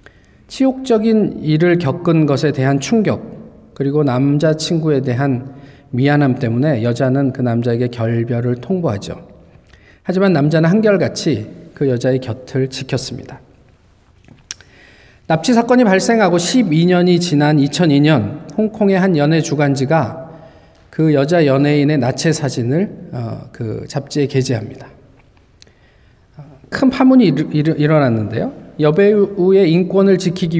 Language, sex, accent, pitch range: Korean, male, native, 130-170 Hz